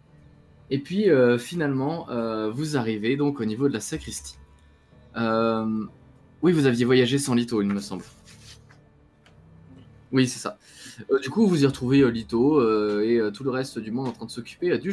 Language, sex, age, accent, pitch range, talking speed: French, male, 20-39, French, 105-130 Hz, 180 wpm